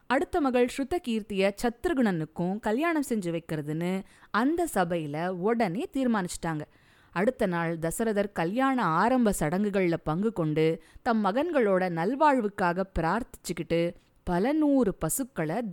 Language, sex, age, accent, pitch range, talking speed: Tamil, female, 20-39, native, 165-235 Hz, 105 wpm